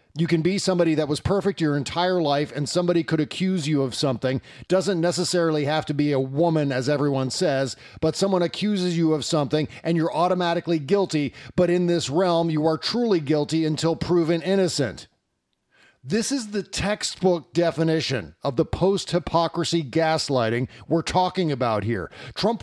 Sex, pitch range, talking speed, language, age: male, 150-180 Hz, 165 wpm, English, 40-59